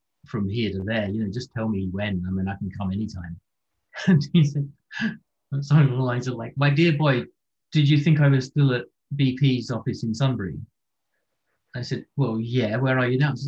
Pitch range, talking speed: 110-140 Hz, 210 wpm